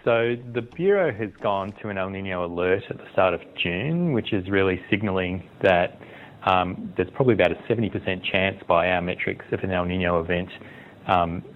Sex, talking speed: male, 185 wpm